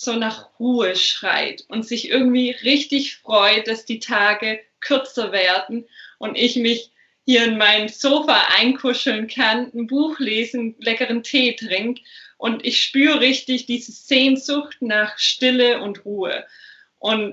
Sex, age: female, 20-39